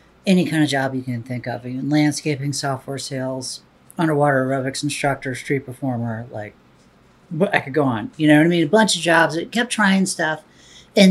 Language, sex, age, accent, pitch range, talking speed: English, female, 50-69, American, 130-170 Hz, 195 wpm